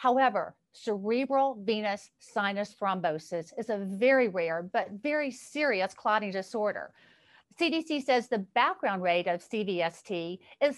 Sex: female